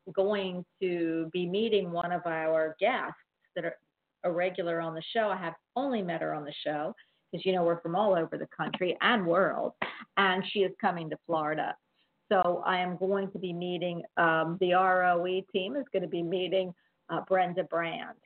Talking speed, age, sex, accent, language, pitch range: 195 wpm, 50-69, female, American, English, 170-195 Hz